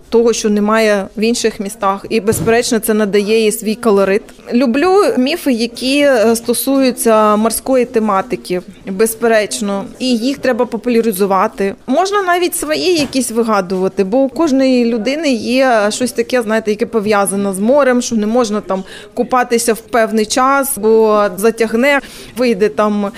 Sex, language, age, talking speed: female, Ukrainian, 20-39, 135 wpm